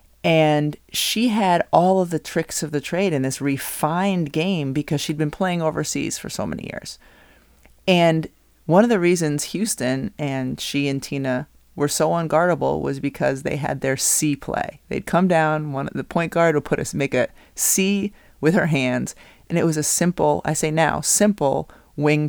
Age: 30-49